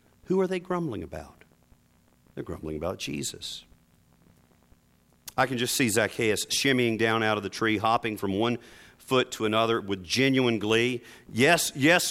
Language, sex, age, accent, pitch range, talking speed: English, male, 40-59, American, 100-145 Hz, 155 wpm